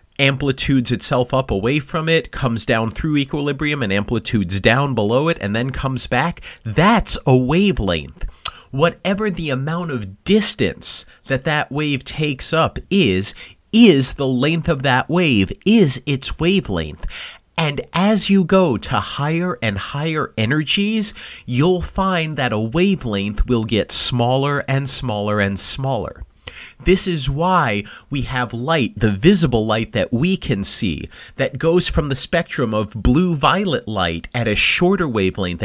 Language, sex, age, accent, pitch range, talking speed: English, male, 30-49, American, 110-170 Hz, 150 wpm